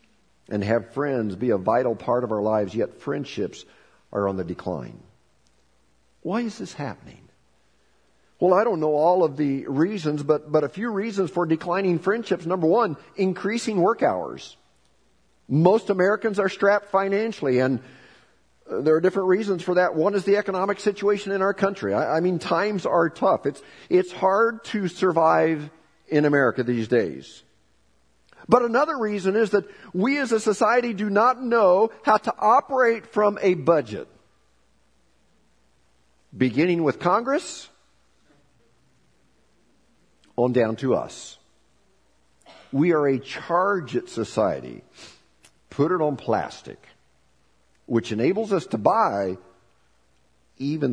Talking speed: 140 wpm